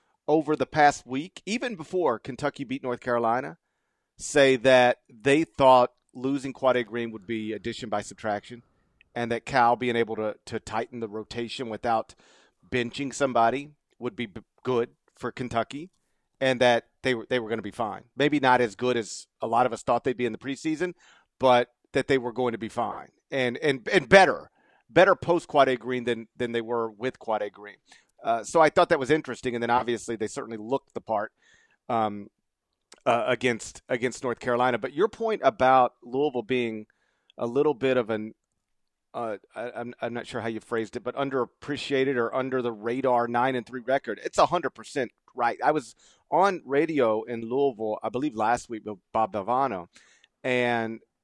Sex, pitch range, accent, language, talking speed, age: male, 115-135 Hz, American, English, 185 wpm, 40-59